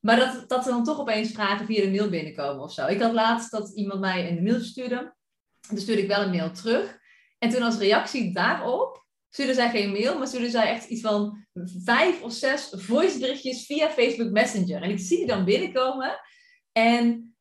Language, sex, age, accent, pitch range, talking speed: Dutch, female, 30-49, Dutch, 200-245 Hz, 205 wpm